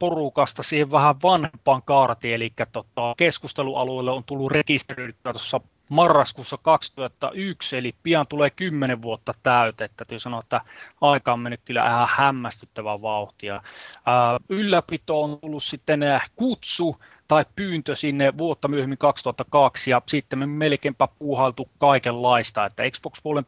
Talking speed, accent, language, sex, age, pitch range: 130 wpm, native, Finnish, male, 30-49, 120-145 Hz